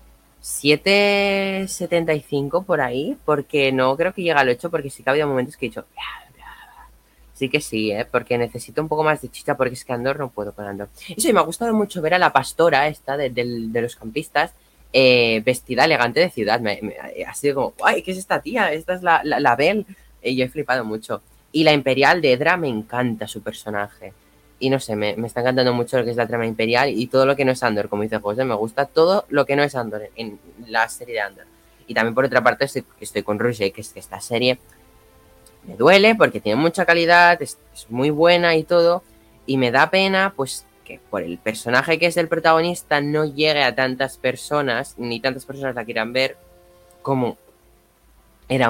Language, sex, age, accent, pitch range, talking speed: Spanish, female, 20-39, Spanish, 110-150 Hz, 225 wpm